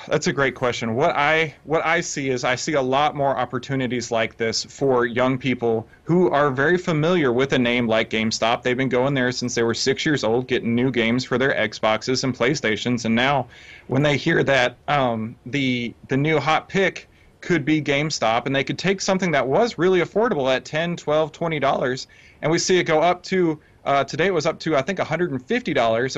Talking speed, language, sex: 210 wpm, English, male